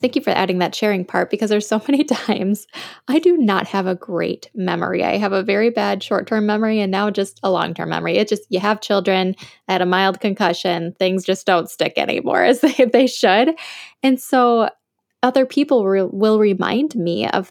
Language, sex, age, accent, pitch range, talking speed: English, female, 10-29, American, 185-225 Hz, 200 wpm